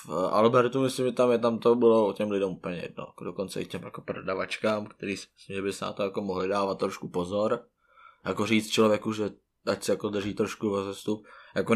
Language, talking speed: Czech, 210 wpm